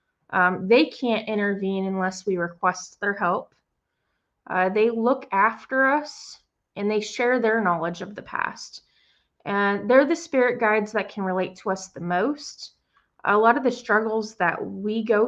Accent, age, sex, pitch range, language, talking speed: American, 20-39, female, 195-245 Hz, English, 165 wpm